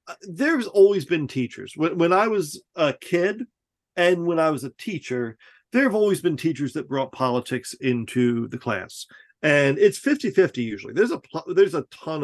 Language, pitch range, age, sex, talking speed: English, 120-155 Hz, 40-59, male, 180 wpm